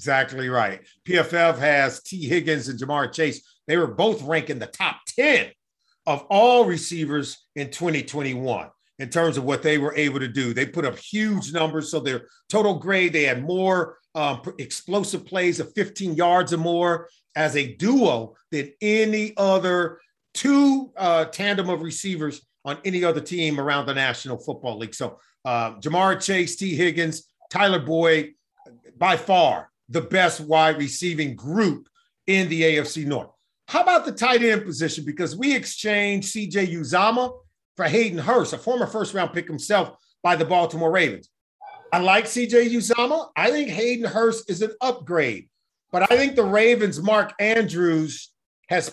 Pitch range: 150-210 Hz